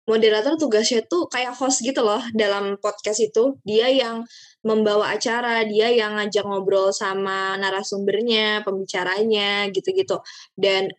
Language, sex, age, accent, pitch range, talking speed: Indonesian, female, 20-39, native, 200-265 Hz, 125 wpm